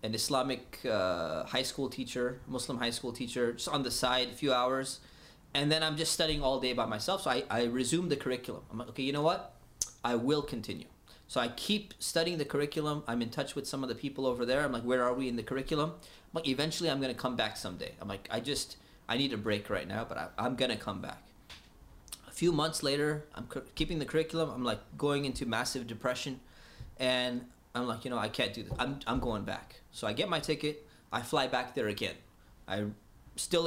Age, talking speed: 20-39, 230 wpm